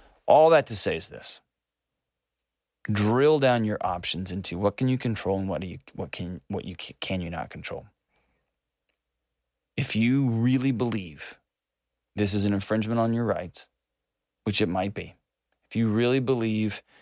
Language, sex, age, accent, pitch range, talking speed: English, male, 20-39, American, 95-115 Hz, 160 wpm